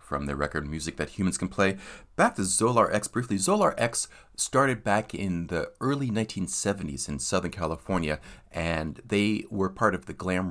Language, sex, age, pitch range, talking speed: English, male, 40-59, 75-95 Hz, 175 wpm